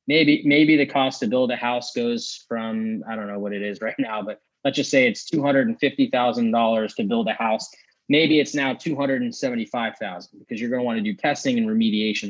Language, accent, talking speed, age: English, American, 205 wpm, 20-39